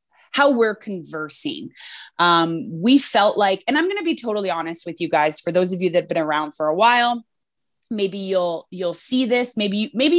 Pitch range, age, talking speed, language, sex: 175-255 Hz, 20-39, 205 wpm, English, female